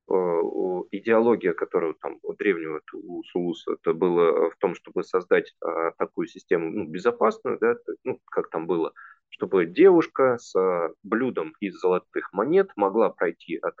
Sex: male